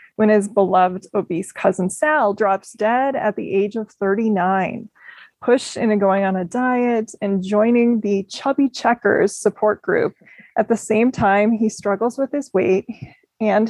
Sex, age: female, 20-39